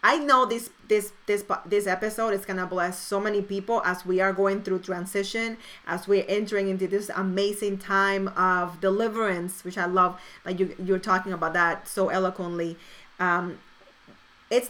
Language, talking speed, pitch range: English, 165 wpm, 195-270 Hz